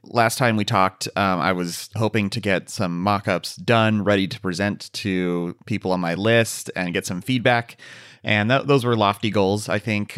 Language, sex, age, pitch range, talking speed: English, male, 30-49, 90-115 Hz, 190 wpm